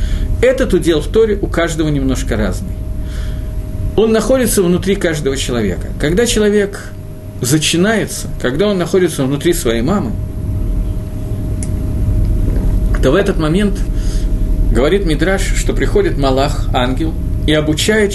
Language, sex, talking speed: Russian, male, 110 wpm